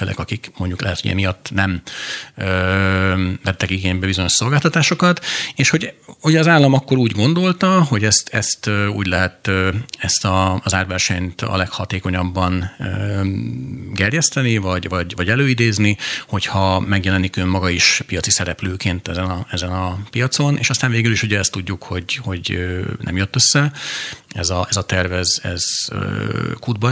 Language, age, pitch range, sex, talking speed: Hungarian, 40-59, 95-115 Hz, male, 155 wpm